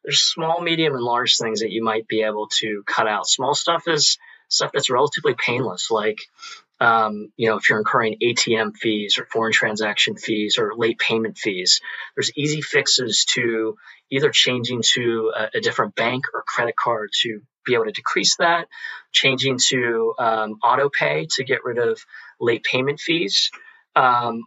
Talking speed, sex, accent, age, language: 175 wpm, male, American, 30-49, English